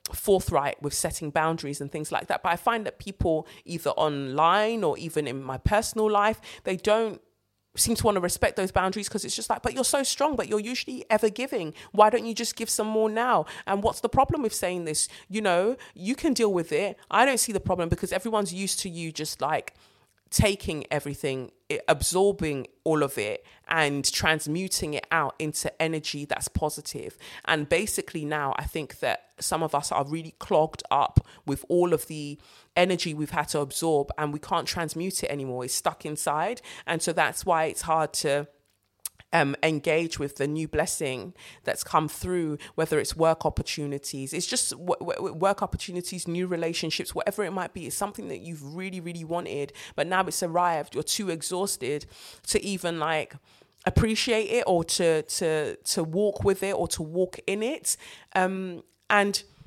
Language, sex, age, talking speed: English, female, 20-39, 185 wpm